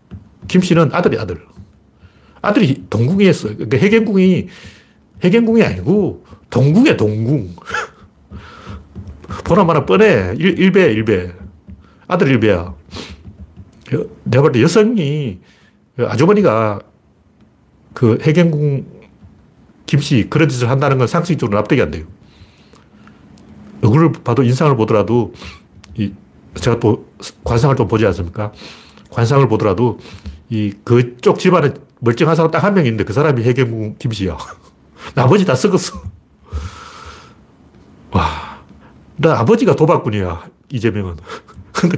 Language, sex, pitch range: Korean, male, 100-150 Hz